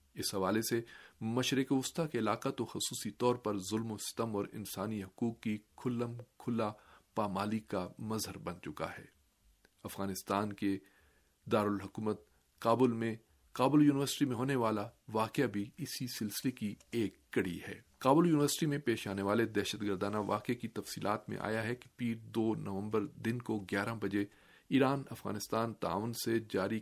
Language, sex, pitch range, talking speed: Urdu, male, 105-125 Hz, 155 wpm